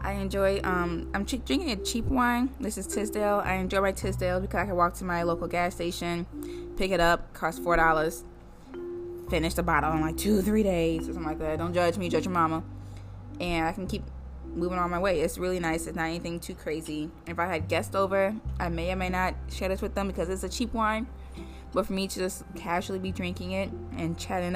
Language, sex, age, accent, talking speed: English, female, 20-39, American, 230 wpm